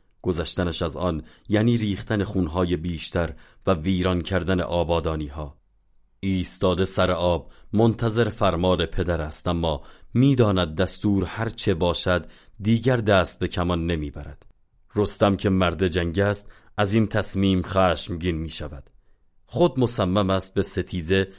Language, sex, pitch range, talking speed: Persian, male, 85-100 Hz, 130 wpm